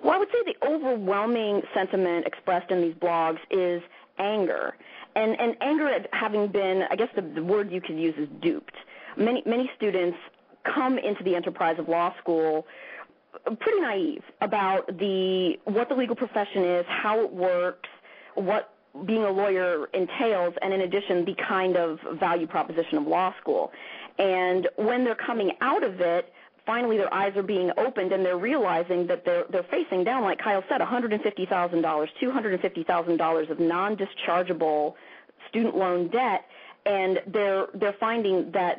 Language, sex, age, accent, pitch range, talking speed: English, female, 30-49, American, 175-225 Hz, 160 wpm